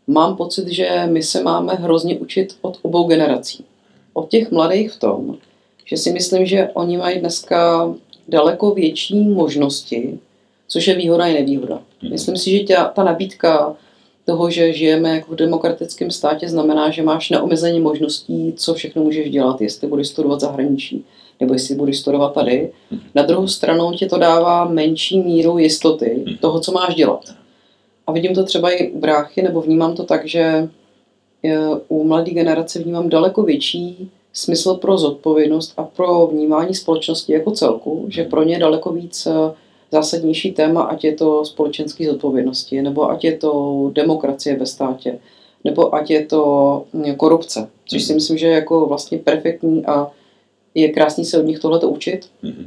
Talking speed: 160 wpm